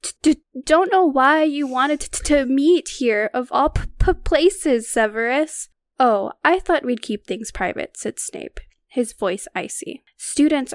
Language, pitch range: English, 215-265 Hz